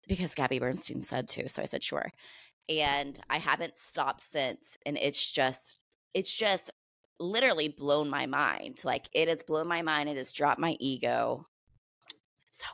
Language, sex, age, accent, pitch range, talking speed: English, female, 20-39, American, 140-165 Hz, 165 wpm